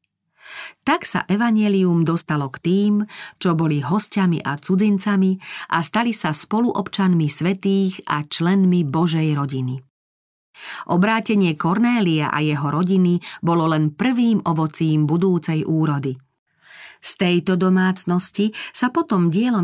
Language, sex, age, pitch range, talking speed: Slovak, female, 40-59, 155-195 Hz, 115 wpm